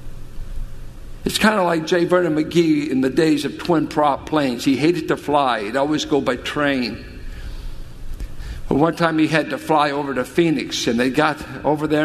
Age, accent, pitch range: 60-79, American, 135-175 Hz